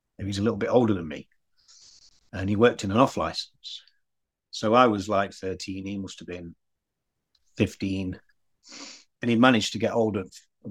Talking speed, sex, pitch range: 175 wpm, male, 95-110 Hz